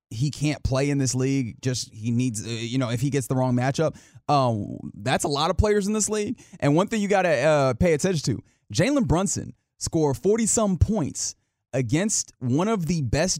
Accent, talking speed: American, 210 wpm